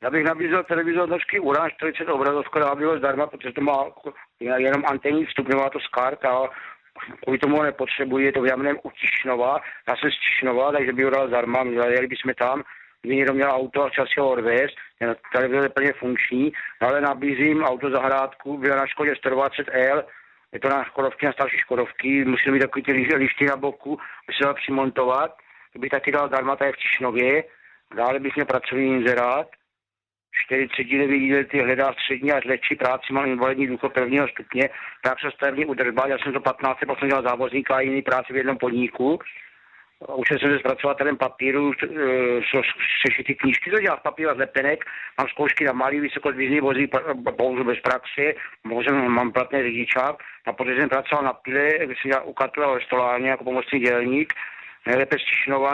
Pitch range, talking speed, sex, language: 130-140 Hz, 170 wpm, male, Czech